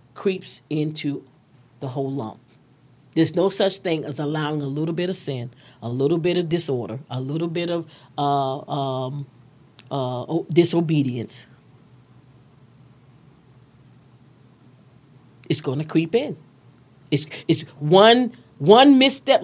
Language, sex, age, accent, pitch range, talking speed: English, female, 40-59, American, 130-170 Hz, 125 wpm